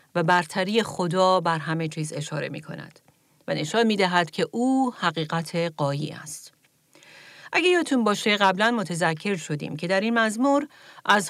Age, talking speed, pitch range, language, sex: 40-59, 155 wpm, 165-215 Hz, Persian, female